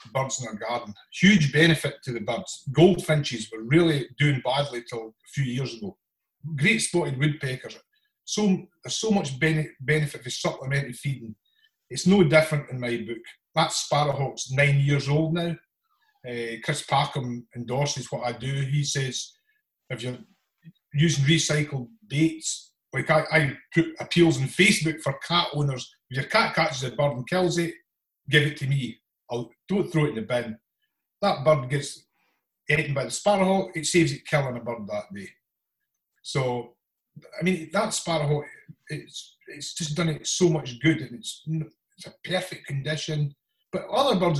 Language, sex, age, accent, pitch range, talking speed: English, male, 40-59, British, 135-175 Hz, 170 wpm